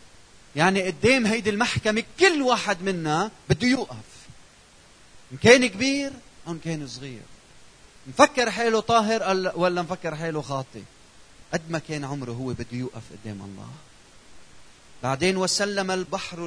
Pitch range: 145-200 Hz